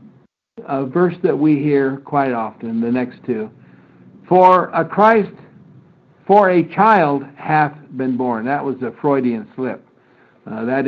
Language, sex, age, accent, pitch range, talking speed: English, male, 60-79, American, 140-190 Hz, 145 wpm